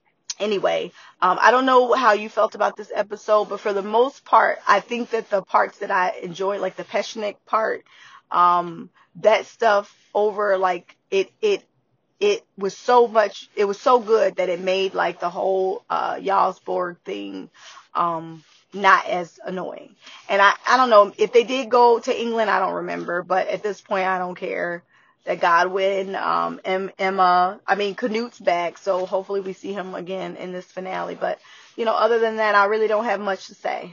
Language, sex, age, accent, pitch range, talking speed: English, female, 20-39, American, 185-225 Hz, 190 wpm